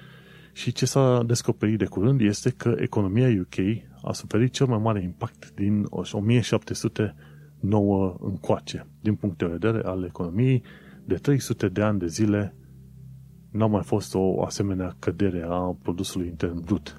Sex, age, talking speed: male, 30-49, 145 wpm